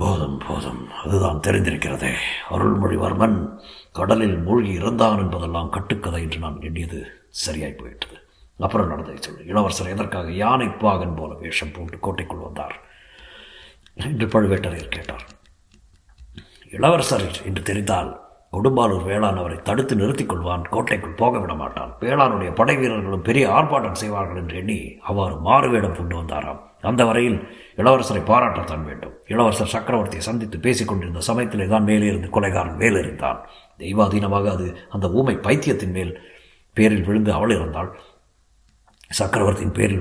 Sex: male